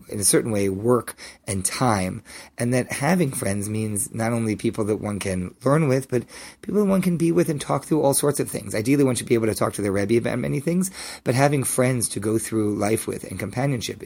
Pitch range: 105-140 Hz